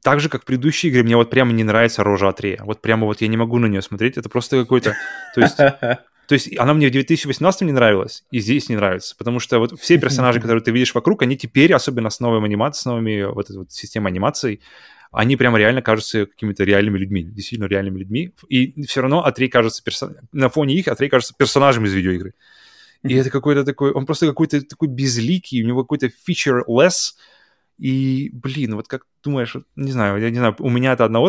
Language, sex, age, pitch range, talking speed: Russian, male, 20-39, 110-135 Hz, 215 wpm